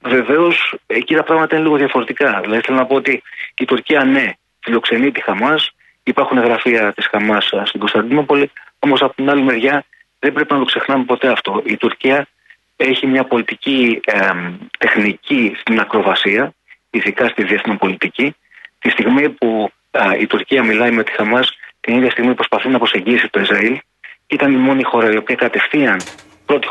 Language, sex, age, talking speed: Greek, male, 30-49, 170 wpm